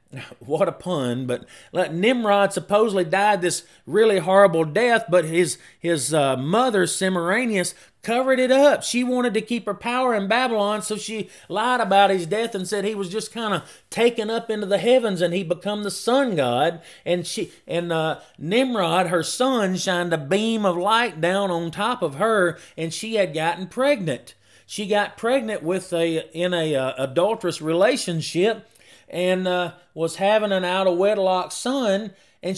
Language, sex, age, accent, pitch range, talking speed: English, male, 30-49, American, 175-220 Hz, 175 wpm